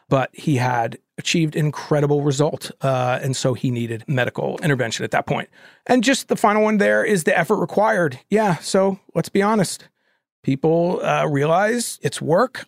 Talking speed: 170 wpm